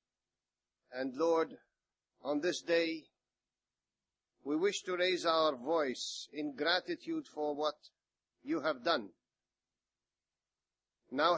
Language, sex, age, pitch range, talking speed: English, male, 50-69, 150-215 Hz, 100 wpm